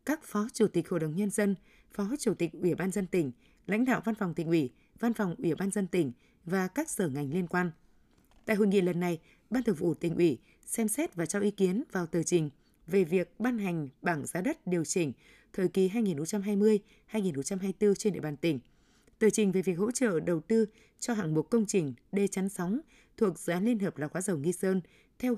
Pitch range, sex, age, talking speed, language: 175-220 Hz, female, 20-39, 225 wpm, Vietnamese